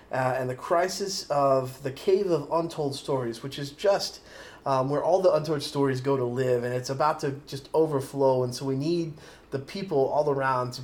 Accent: American